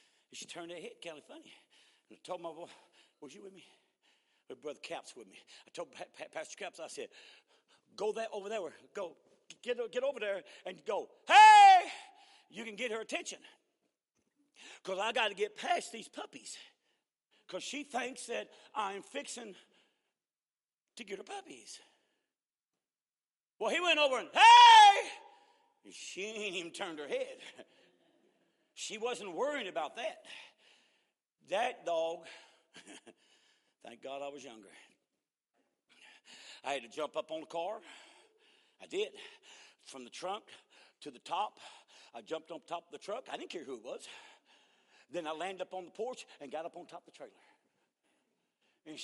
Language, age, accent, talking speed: English, 50-69, American, 165 wpm